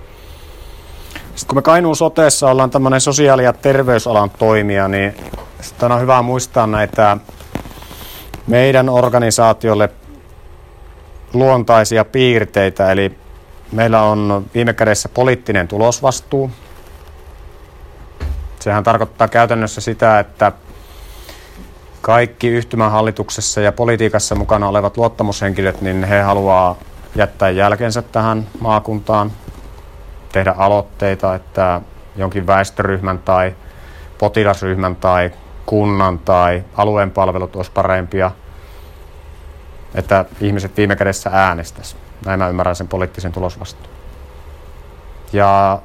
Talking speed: 90 wpm